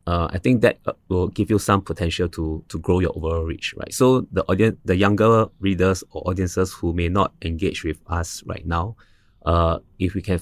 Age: 20-39